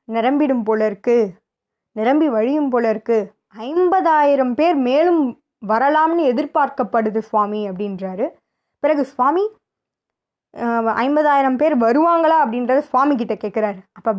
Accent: native